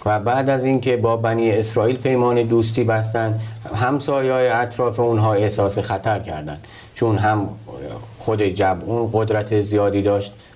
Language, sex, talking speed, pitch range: Persian, male, 135 wpm, 100-115 Hz